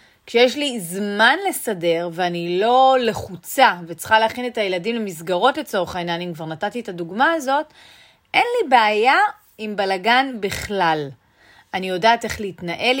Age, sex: 30-49, female